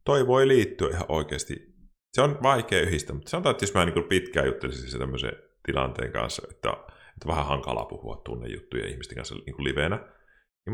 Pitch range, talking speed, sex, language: 70-100 Hz, 180 wpm, male, Finnish